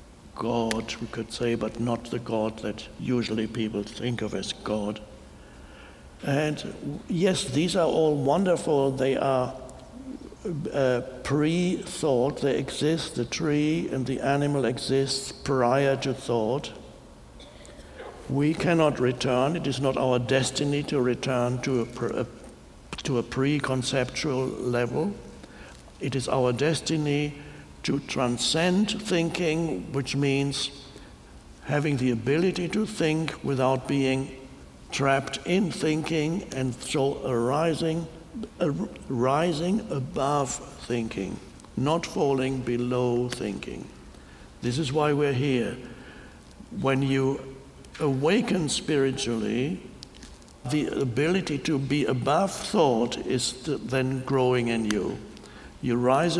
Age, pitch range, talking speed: 60-79, 120-150 Hz, 110 wpm